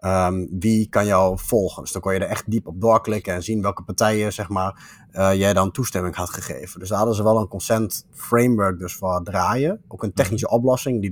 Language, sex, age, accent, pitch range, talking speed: Dutch, male, 20-39, Dutch, 95-110 Hz, 225 wpm